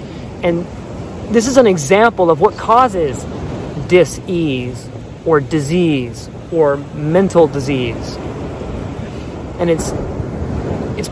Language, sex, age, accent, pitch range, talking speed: English, male, 30-49, American, 140-195 Hz, 90 wpm